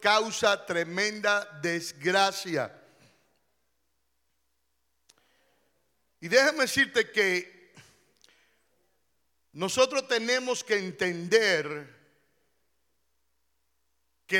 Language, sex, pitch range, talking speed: Spanish, male, 165-245 Hz, 50 wpm